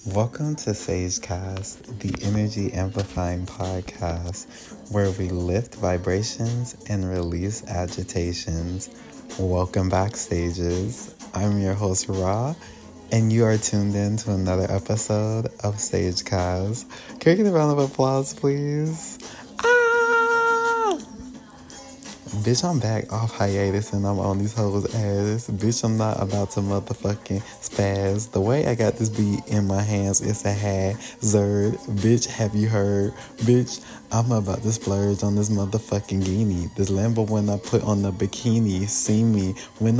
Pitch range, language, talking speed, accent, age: 100-115 Hz, English, 140 wpm, American, 20-39